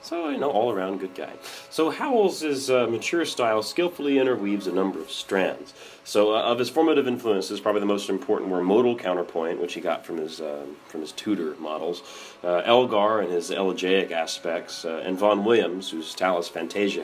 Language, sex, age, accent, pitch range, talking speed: English, male, 30-49, American, 85-110 Hz, 185 wpm